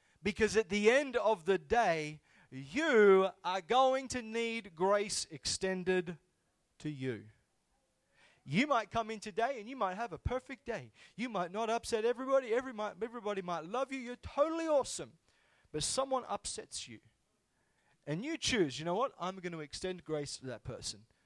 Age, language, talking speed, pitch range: 30-49, English, 165 wpm, 150-220 Hz